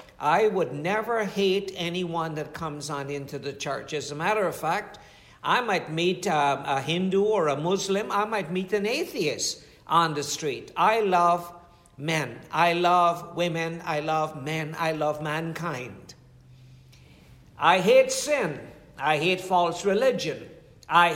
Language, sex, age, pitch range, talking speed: English, male, 60-79, 155-205 Hz, 150 wpm